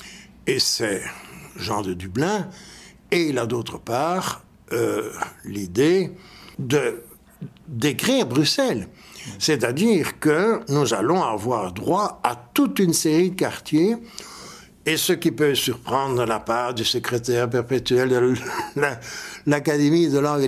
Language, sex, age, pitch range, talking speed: French, male, 60-79, 120-185 Hz, 125 wpm